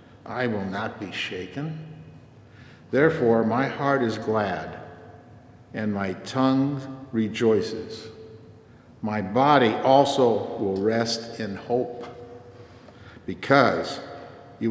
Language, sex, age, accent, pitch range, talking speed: English, male, 60-79, American, 110-125 Hz, 95 wpm